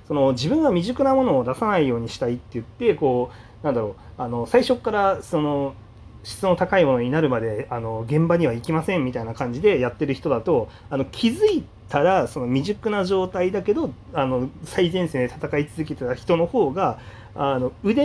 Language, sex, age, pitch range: Japanese, male, 40-59, 115-165 Hz